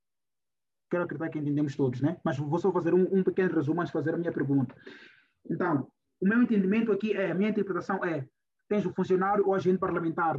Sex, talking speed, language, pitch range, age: male, 210 wpm, Portuguese, 175-205 Hz, 20-39